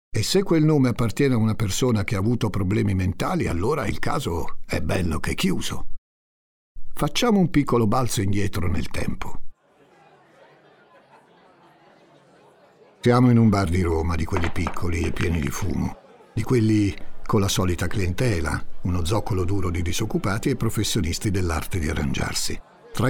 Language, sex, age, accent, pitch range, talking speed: Italian, male, 60-79, native, 95-135 Hz, 150 wpm